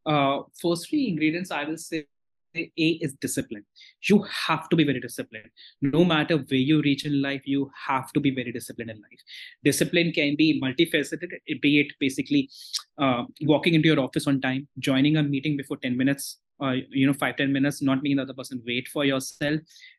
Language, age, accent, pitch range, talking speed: English, 20-39, Indian, 135-170 Hz, 190 wpm